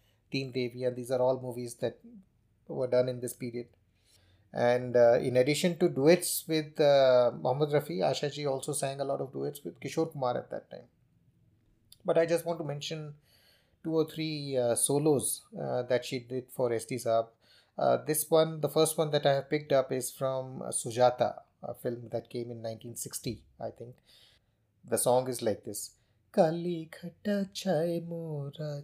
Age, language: 30-49, Hindi